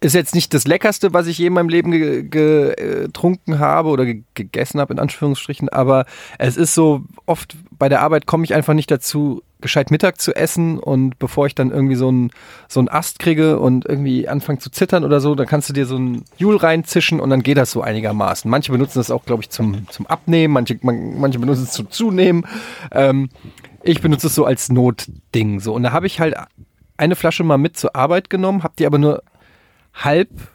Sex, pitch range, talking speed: male, 125-165 Hz, 210 wpm